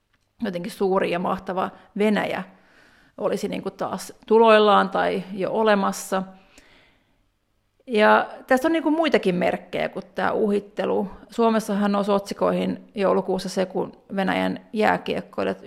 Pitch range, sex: 185-220 Hz, female